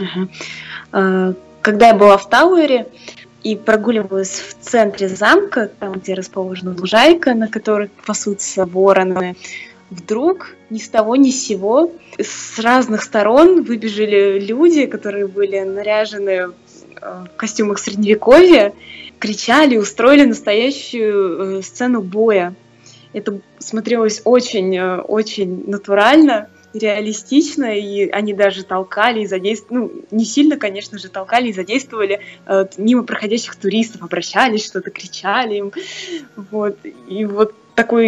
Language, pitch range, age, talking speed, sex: Russian, 195-230 Hz, 20-39, 110 wpm, female